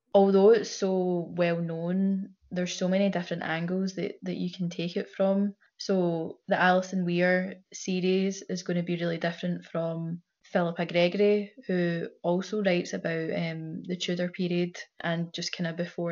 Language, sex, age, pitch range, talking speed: English, female, 10-29, 170-200 Hz, 165 wpm